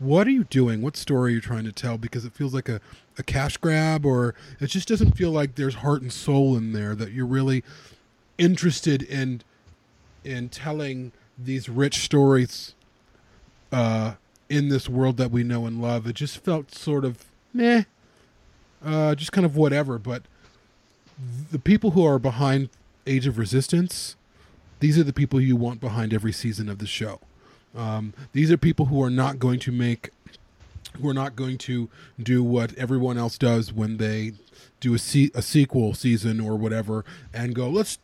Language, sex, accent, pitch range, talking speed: English, male, American, 115-140 Hz, 180 wpm